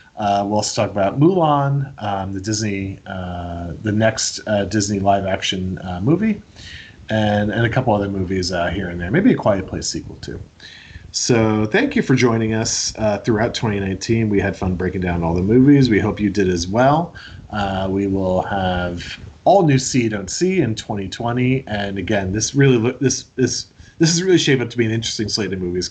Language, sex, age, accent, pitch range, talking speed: English, male, 30-49, American, 100-130 Hz, 205 wpm